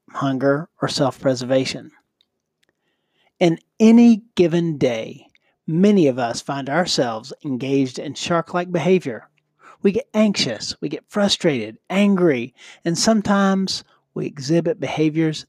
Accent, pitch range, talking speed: American, 140-200 Hz, 110 wpm